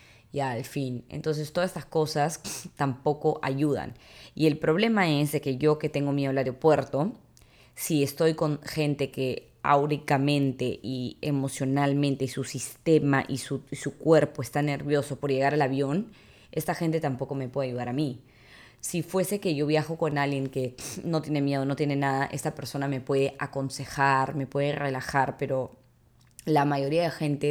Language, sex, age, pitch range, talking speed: English, female, 20-39, 135-150 Hz, 170 wpm